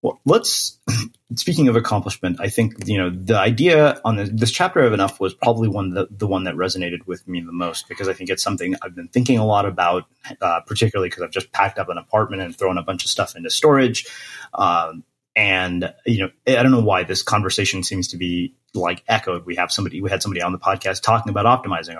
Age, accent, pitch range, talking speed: 30-49, American, 95-115 Hz, 225 wpm